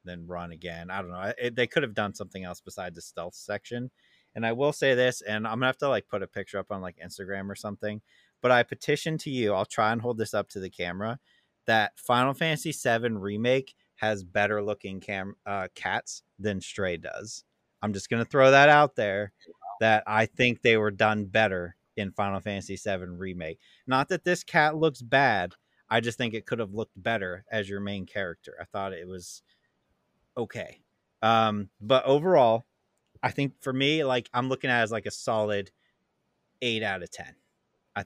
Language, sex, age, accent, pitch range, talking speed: English, male, 30-49, American, 100-125 Hz, 205 wpm